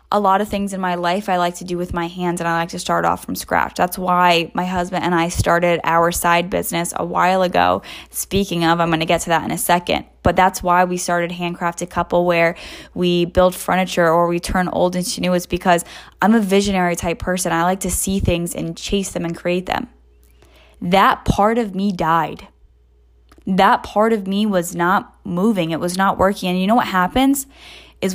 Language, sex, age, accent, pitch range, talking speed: English, female, 10-29, American, 170-205 Hz, 220 wpm